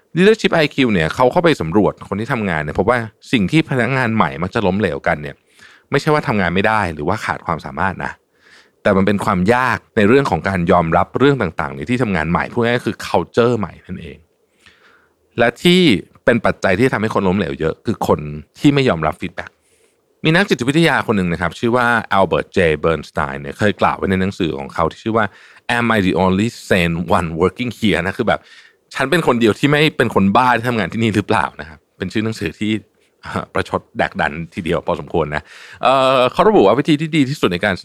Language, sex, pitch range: Thai, male, 90-140 Hz